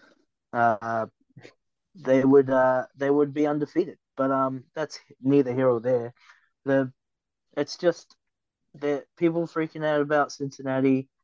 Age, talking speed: 20-39, 130 wpm